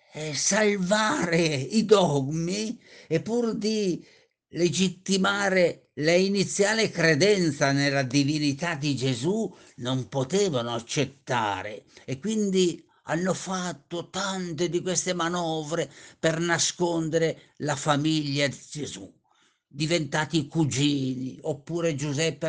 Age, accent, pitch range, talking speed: 50-69, native, 145-190 Hz, 95 wpm